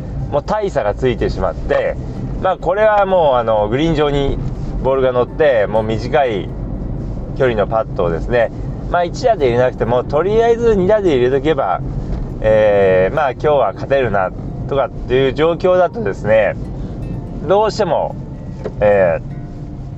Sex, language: male, Japanese